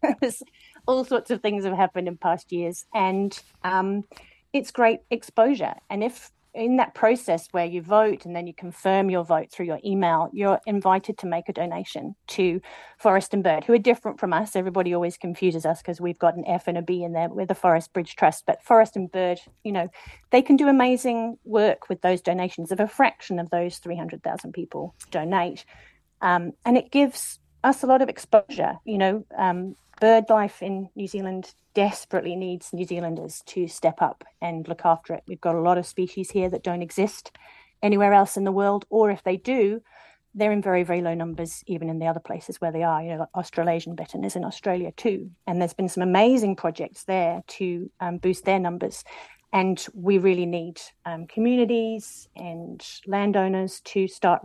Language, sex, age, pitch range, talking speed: English, female, 40-59, 175-210 Hz, 195 wpm